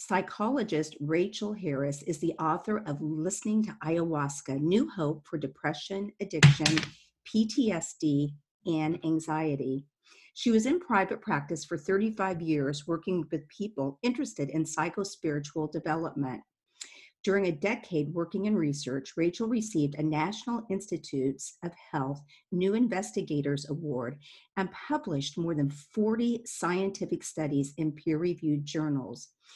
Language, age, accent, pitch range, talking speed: English, 50-69, American, 145-195 Hz, 120 wpm